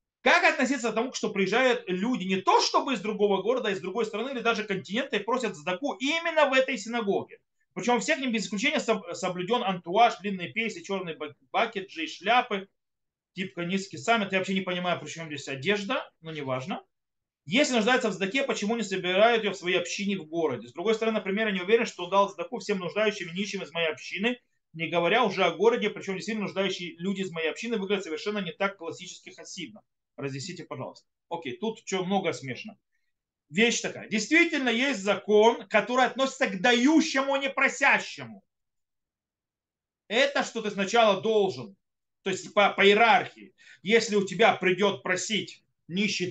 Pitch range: 180-235 Hz